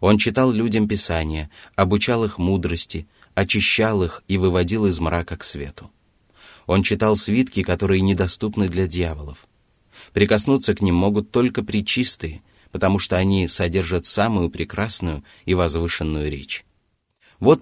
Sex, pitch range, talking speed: male, 85-110 Hz, 130 wpm